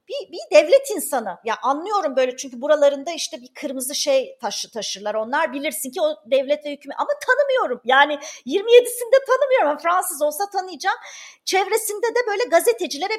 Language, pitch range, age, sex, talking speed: Turkish, 265-385 Hz, 40-59, female, 155 wpm